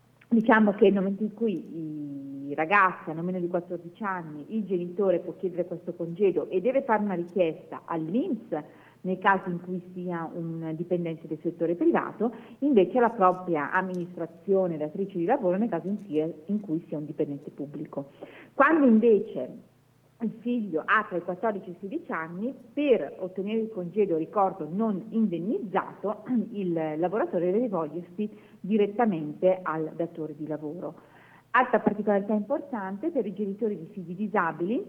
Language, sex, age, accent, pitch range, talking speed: Italian, female, 40-59, native, 165-210 Hz, 150 wpm